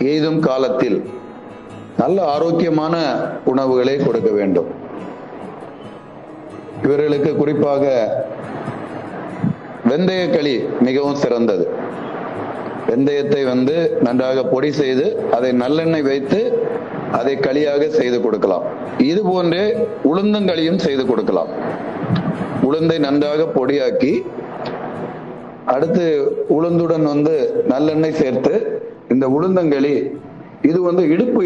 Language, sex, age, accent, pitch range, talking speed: Tamil, male, 30-49, native, 140-185 Hz, 80 wpm